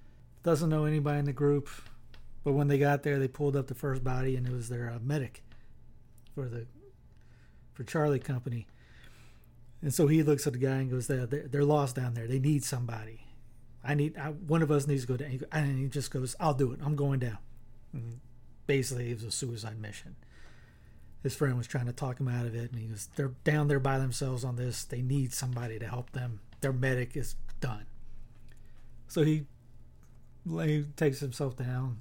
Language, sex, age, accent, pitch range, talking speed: English, male, 40-59, American, 125-145 Hz, 195 wpm